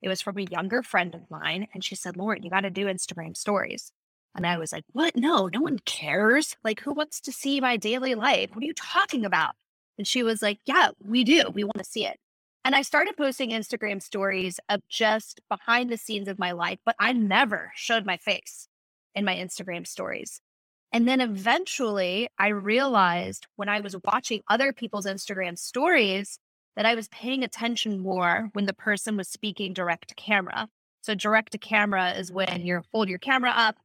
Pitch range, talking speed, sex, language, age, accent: 195-245 Hz, 200 wpm, female, English, 20-39, American